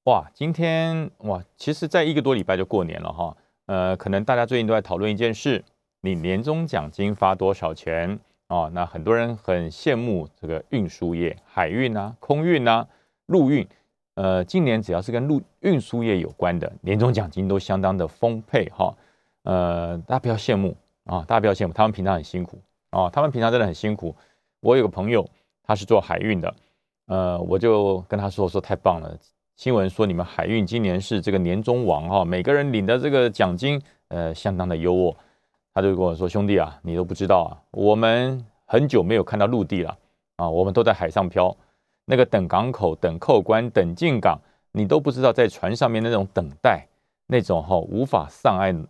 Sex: male